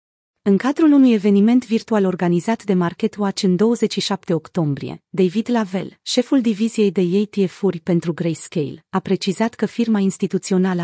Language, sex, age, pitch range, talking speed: Romanian, female, 30-49, 180-220 Hz, 135 wpm